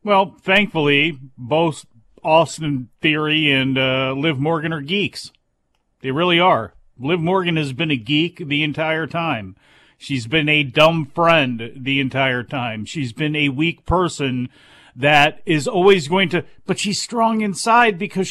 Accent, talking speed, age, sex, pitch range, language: American, 150 wpm, 40-59, male, 140-170 Hz, English